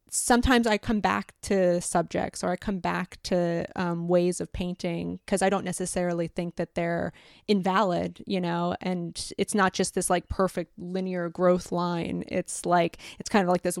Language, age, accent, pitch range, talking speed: English, 20-39, American, 175-205 Hz, 185 wpm